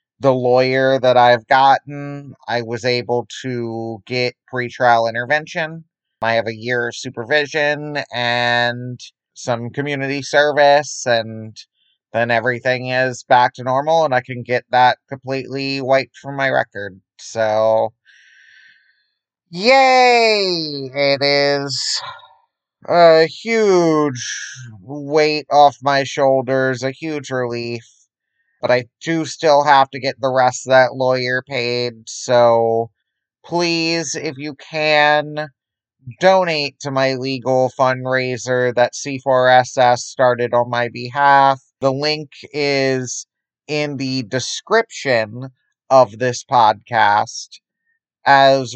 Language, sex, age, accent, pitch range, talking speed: English, male, 30-49, American, 120-145 Hz, 110 wpm